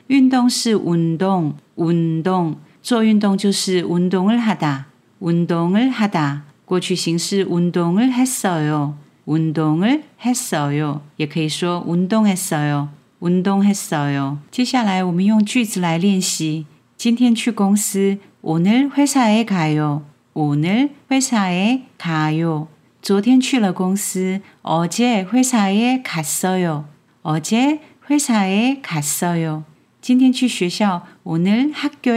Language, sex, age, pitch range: Chinese, female, 40-59, 155-230 Hz